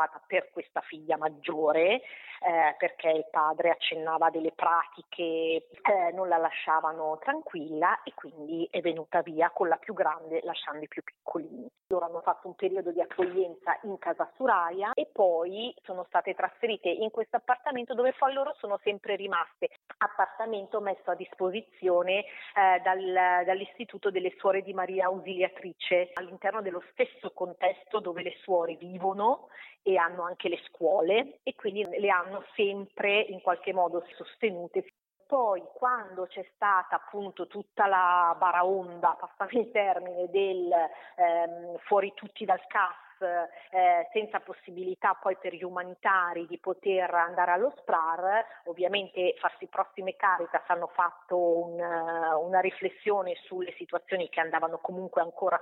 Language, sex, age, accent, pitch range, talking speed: Italian, female, 40-59, native, 170-195 Hz, 140 wpm